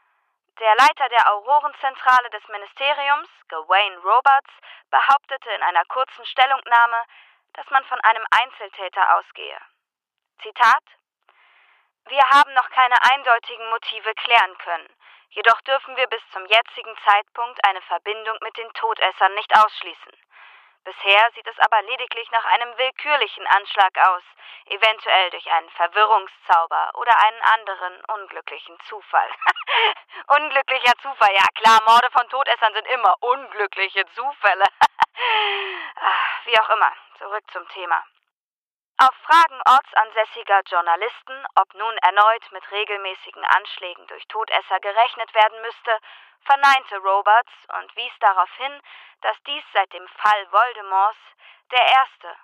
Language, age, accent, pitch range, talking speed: German, 20-39, German, 200-260 Hz, 120 wpm